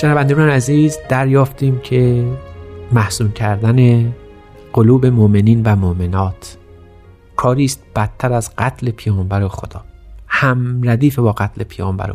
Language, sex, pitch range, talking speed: Persian, male, 105-130 Hz, 105 wpm